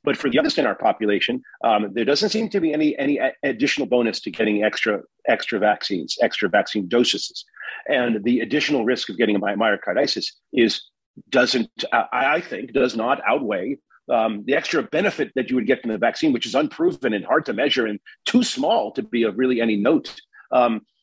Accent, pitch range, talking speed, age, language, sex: American, 115-150 Hz, 195 wpm, 40-59, English, male